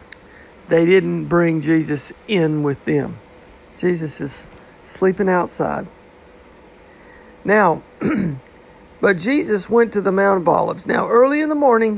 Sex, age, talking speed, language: male, 50-69, 125 wpm, English